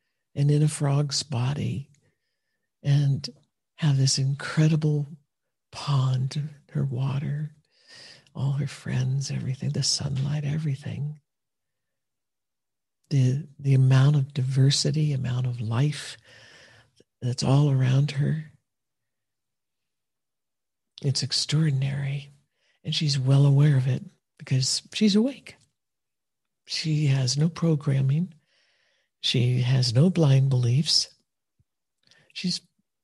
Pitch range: 135-155 Hz